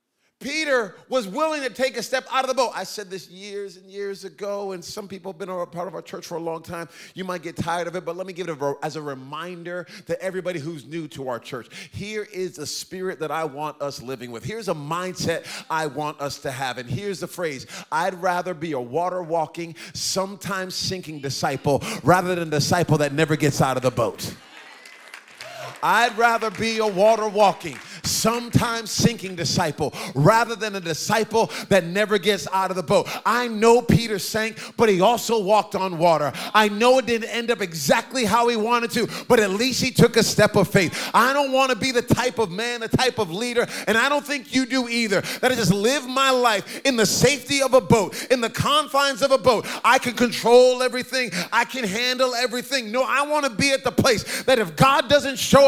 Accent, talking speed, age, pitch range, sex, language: American, 220 wpm, 30-49, 175-240 Hz, male, English